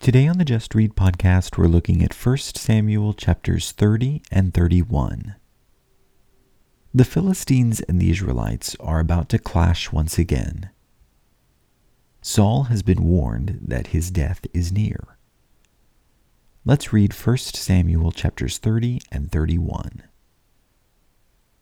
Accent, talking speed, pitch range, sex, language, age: American, 120 wpm, 85-110 Hz, male, English, 40-59